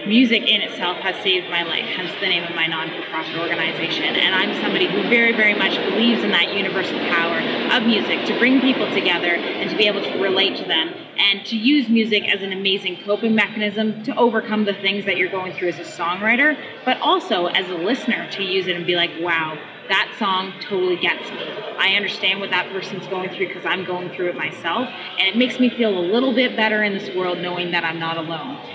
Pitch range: 190-235 Hz